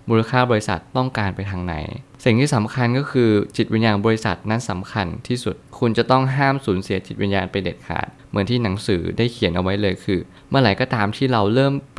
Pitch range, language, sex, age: 100-125 Hz, Thai, male, 20-39